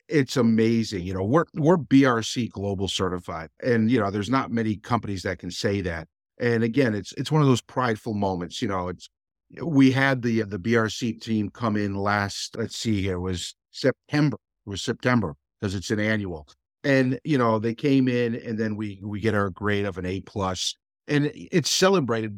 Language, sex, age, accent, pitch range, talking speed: English, male, 50-69, American, 100-135 Hz, 195 wpm